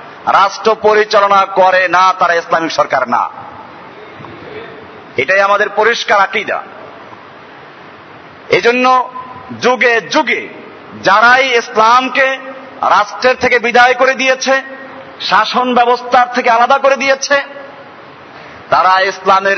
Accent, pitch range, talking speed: native, 195-255 Hz, 30 wpm